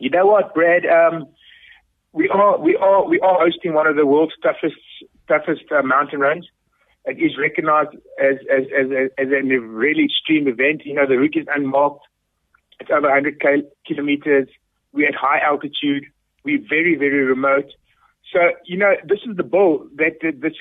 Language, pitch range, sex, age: English, 145-185 Hz, male, 60-79